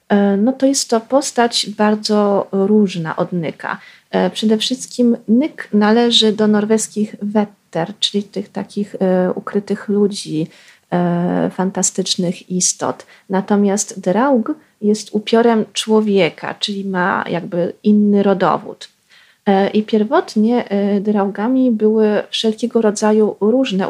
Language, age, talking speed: Polish, 30-49, 100 wpm